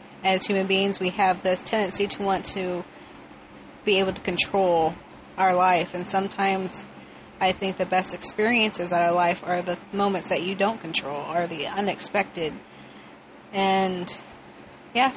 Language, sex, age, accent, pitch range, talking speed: English, female, 30-49, American, 185-210 Hz, 150 wpm